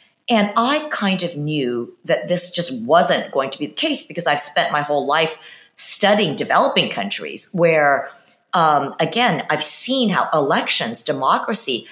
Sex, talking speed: female, 155 wpm